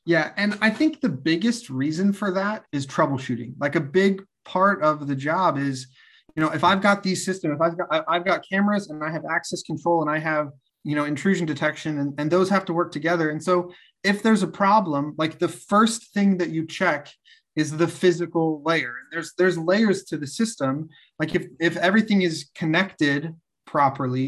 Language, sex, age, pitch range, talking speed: English, male, 30-49, 145-175 Hz, 200 wpm